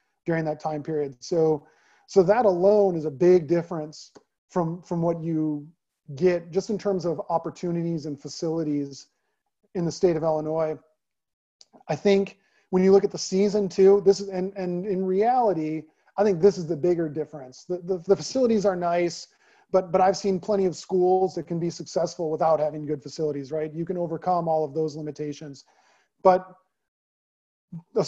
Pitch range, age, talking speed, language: 160-195 Hz, 40-59, 170 wpm, English